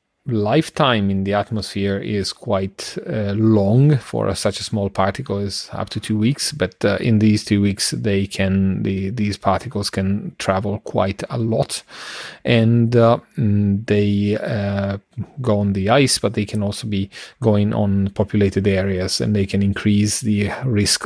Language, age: English, 30-49